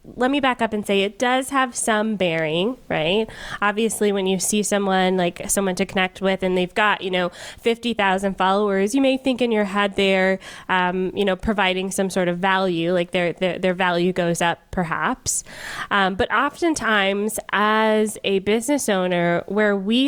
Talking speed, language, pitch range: 185 wpm, English, 185-225 Hz